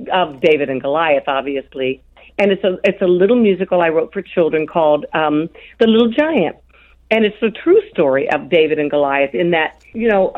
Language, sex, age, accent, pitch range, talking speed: English, female, 50-69, American, 155-225 Hz, 195 wpm